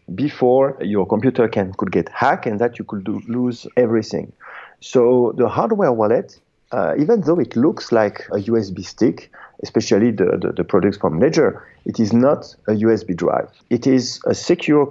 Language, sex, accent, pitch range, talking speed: English, male, French, 105-130 Hz, 175 wpm